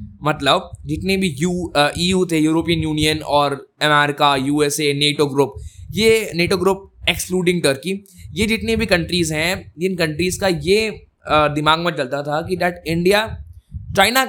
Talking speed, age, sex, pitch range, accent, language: 160 wpm, 20-39, male, 145-185 Hz, native, Hindi